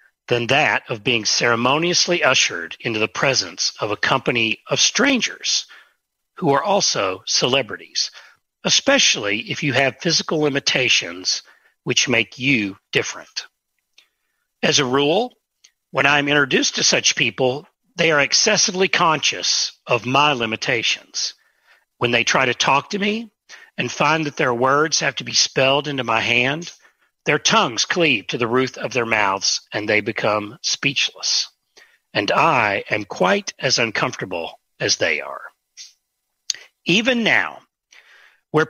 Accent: American